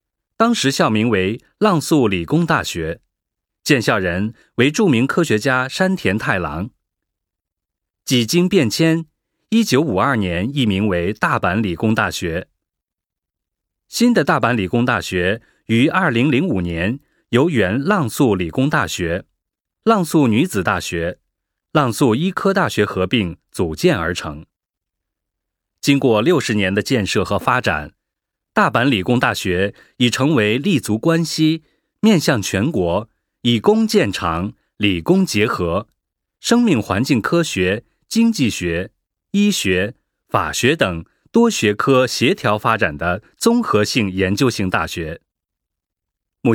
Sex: male